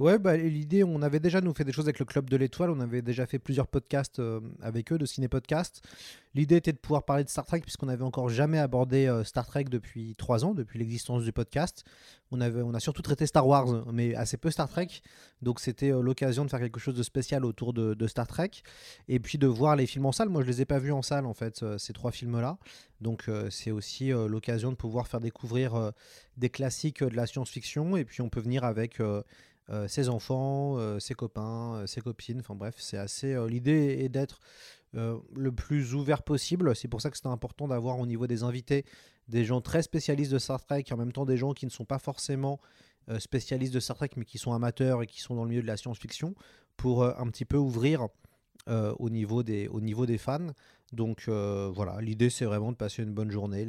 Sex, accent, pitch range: male, French, 115-140 Hz